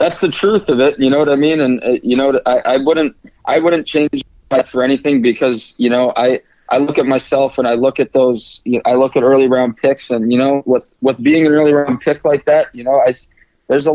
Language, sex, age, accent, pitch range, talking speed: English, male, 20-39, American, 115-135 Hz, 260 wpm